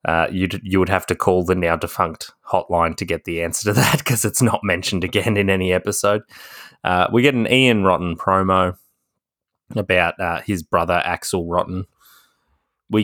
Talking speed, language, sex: 180 wpm, English, male